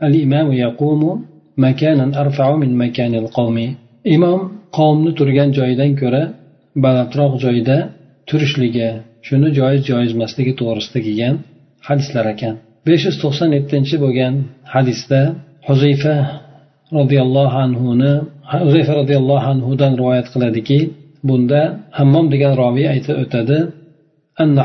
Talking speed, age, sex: 95 wpm, 40-59, male